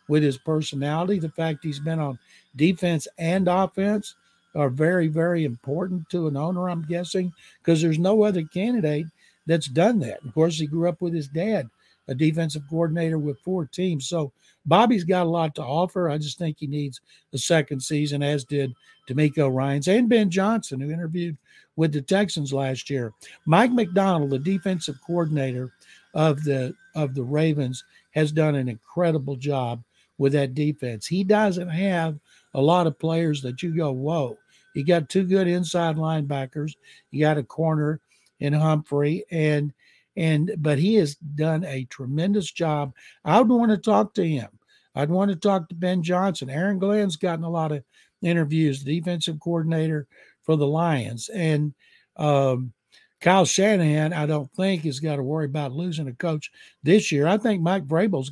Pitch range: 145-180 Hz